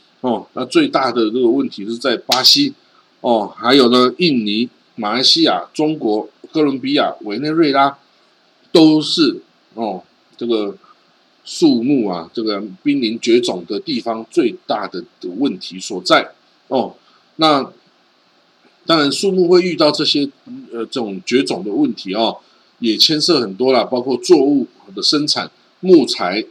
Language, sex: Chinese, male